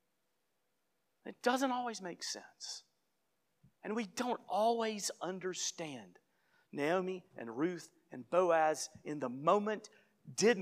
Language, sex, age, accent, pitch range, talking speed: English, male, 40-59, American, 145-205 Hz, 105 wpm